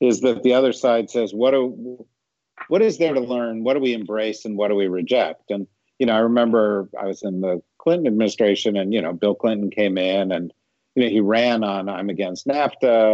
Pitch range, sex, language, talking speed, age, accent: 100-120 Hz, male, English, 225 wpm, 50-69, American